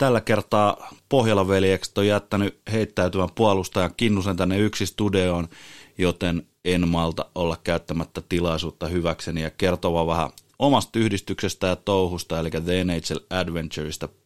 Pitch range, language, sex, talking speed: 80-100 Hz, Finnish, male, 125 wpm